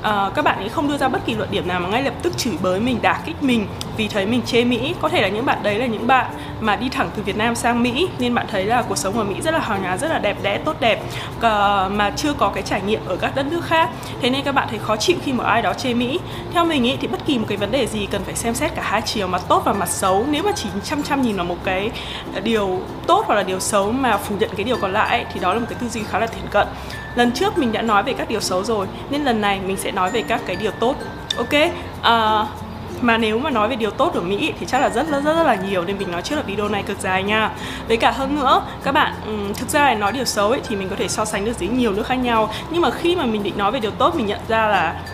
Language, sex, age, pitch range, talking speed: Vietnamese, female, 20-39, 210-265 Hz, 310 wpm